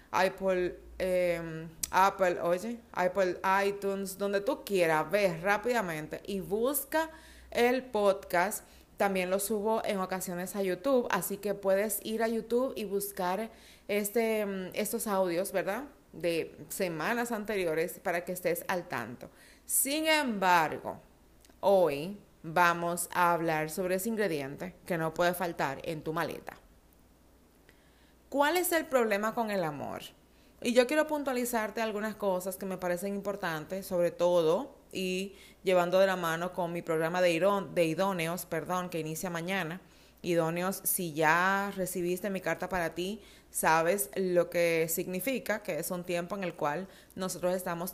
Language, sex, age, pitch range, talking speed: Spanish, female, 30-49, 175-205 Hz, 140 wpm